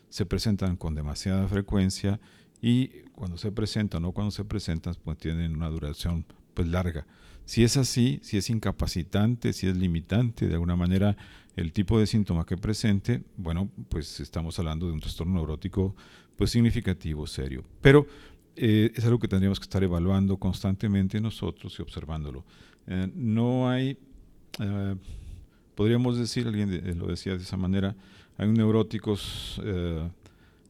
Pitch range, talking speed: 85-105 Hz, 150 wpm